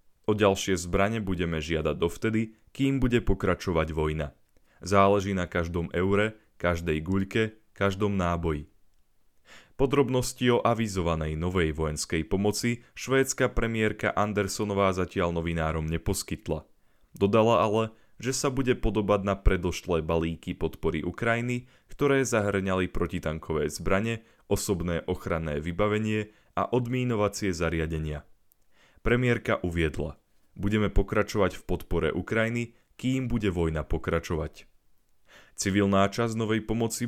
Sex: male